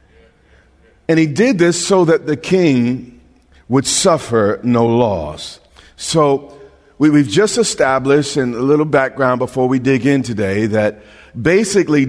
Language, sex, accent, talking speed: English, male, American, 135 wpm